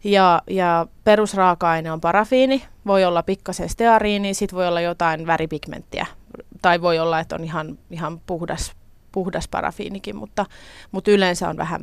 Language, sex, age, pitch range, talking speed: Finnish, female, 20-39, 175-220 Hz, 145 wpm